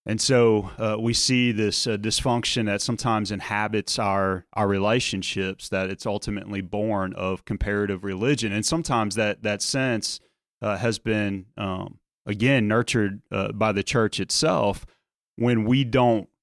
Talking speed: 145 wpm